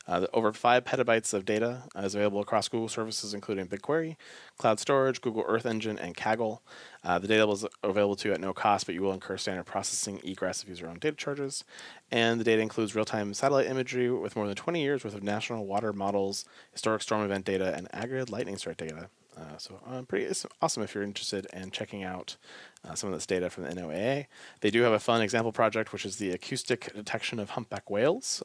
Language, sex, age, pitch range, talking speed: English, male, 30-49, 100-120 Hz, 225 wpm